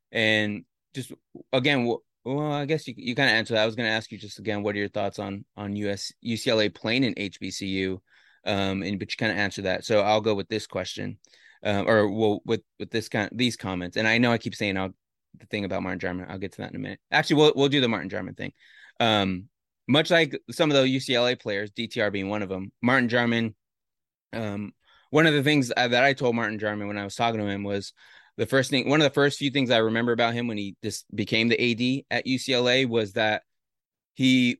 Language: English